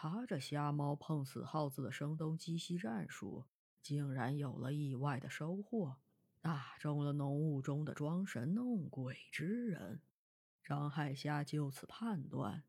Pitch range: 140-190 Hz